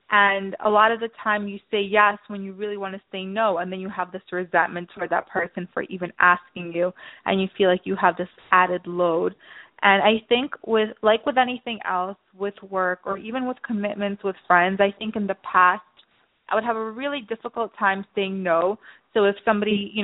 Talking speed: 215 wpm